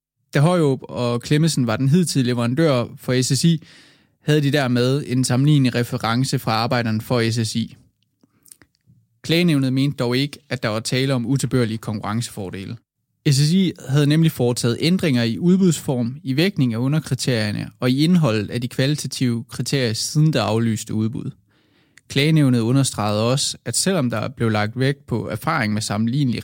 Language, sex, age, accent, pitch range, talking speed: Danish, male, 20-39, native, 115-145 Hz, 150 wpm